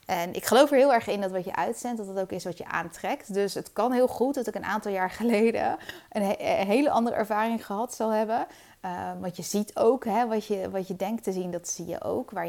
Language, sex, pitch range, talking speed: English, female, 180-215 Hz, 270 wpm